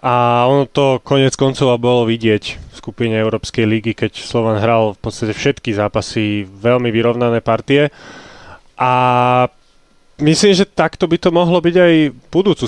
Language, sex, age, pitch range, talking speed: Slovak, male, 20-39, 115-140 Hz, 145 wpm